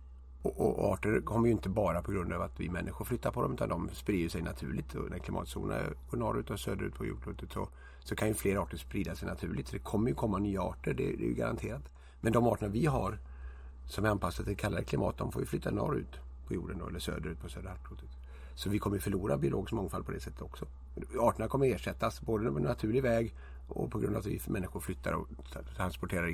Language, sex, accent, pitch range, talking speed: Swedish, male, native, 65-100 Hz, 230 wpm